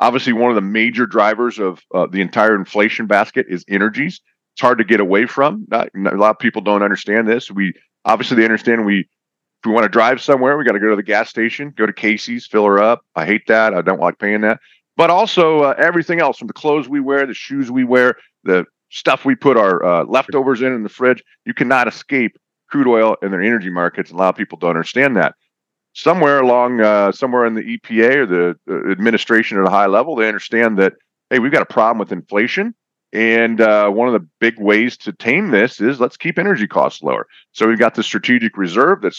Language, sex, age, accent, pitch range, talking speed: English, male, 40-59, American, 100-130 Hz, 230 wpm